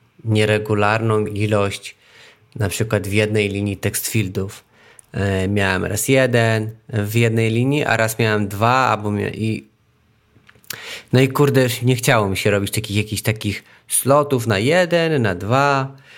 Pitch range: 100-120 Hz